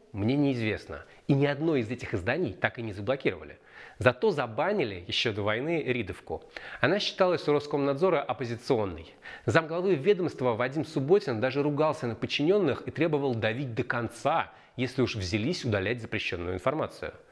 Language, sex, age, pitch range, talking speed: Russian, male, 30-49, 115-155 Hz, 145 wpm